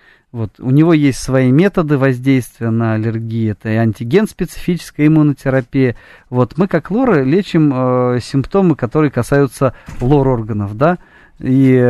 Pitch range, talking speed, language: 125-145 Hz, 130 wpm, Russian